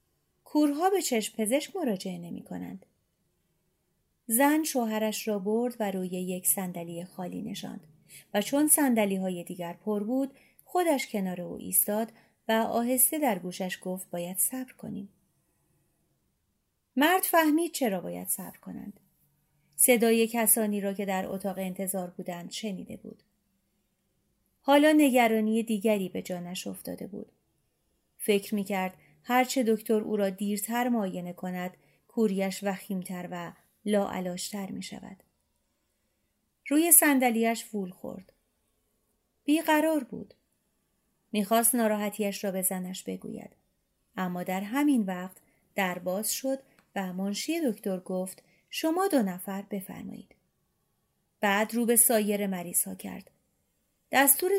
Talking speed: 120 wpm